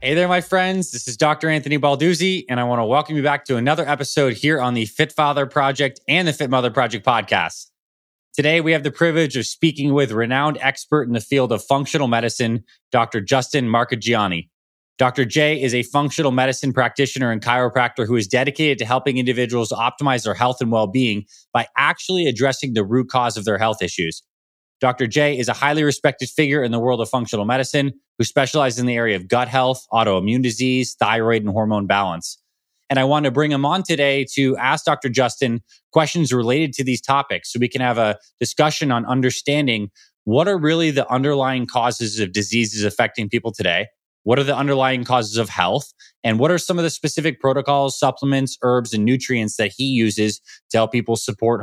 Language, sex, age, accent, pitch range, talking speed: English, male, 20-39, American, 115-145 Hz, 195 wpm